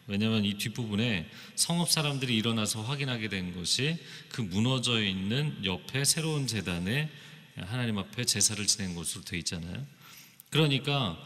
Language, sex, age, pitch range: Korean, male, 40-59, 100-140 Hz